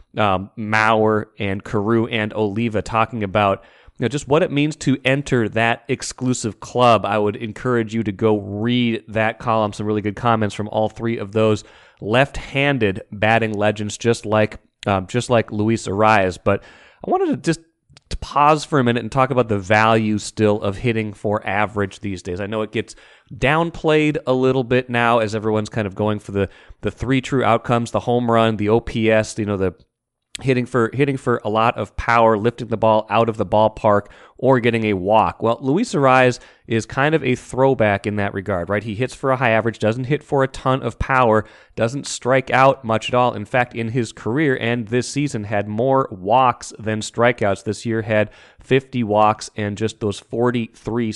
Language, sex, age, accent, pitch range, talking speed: English, male, 30-49, American, 105-125 Hz, 195 wpm